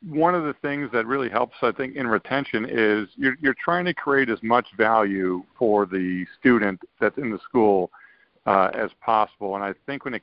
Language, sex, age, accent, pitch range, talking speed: English, male, 50-69, American, 110-130 Hz, 205 wpm